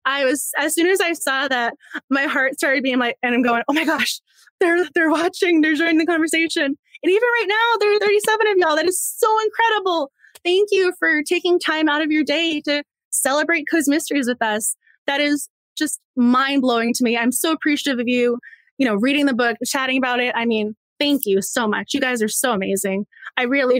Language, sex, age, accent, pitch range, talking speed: English, female, 20-39, American, 245-320 Hz, 215 wpm